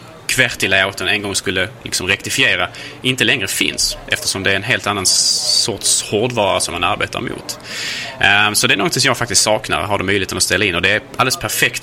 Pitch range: 95-115 Hz